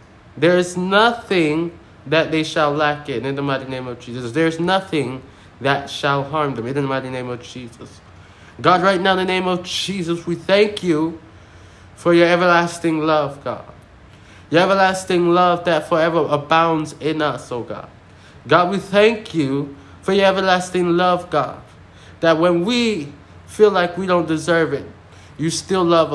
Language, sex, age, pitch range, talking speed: English, male, 20-39, 135-180 Hz, 170 wpm